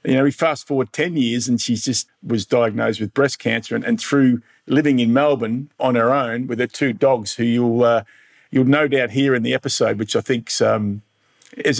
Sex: male